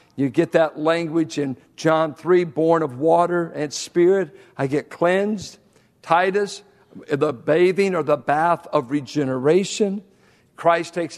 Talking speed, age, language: 135 wpm, 60-79, English